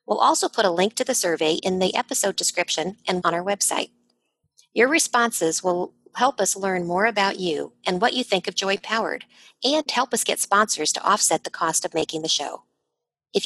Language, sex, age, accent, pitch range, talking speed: English, female, 50-69, American, 170-240 Hz, 205 wpm